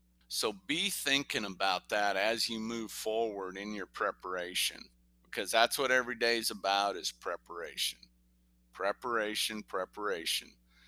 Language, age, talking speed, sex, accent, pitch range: English, 50-69, 125 wpm, male, American, 100-125 Hz